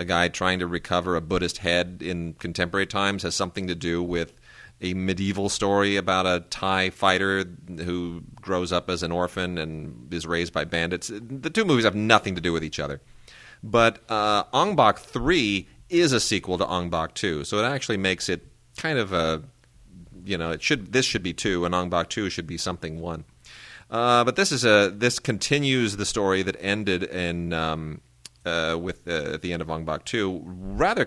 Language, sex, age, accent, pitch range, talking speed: English, male, 30-49, American, 85-105 Hz, 200 wpm